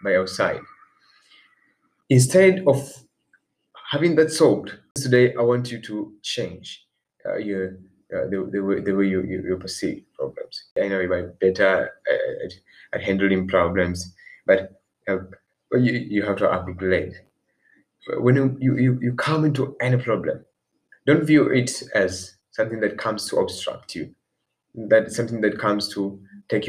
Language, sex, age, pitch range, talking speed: Swahili, male, 20-39, 100-130 Hz, 145 wpm